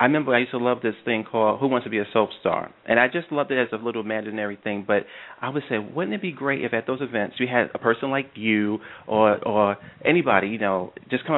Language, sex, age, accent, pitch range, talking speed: English, male, 40-59, American, 110-135 Hz, 270 wpm